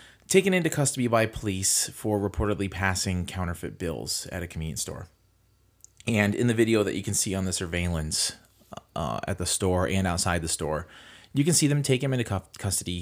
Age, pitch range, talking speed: 30-49, 85-110 Hz, 190 wpm